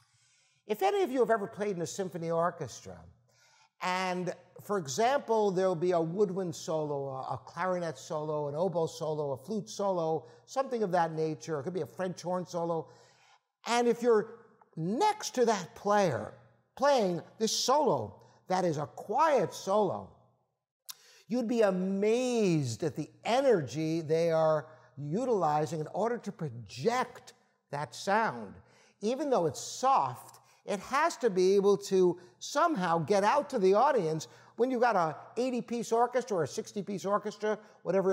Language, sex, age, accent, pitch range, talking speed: English, male, 60-79, American, 160-225 Hz, 155 wpm